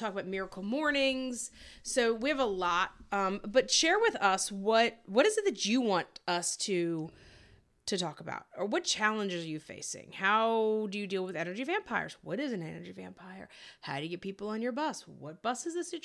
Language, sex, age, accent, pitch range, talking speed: English, female, 30-49, American, 175-230 Hz, 215 wpm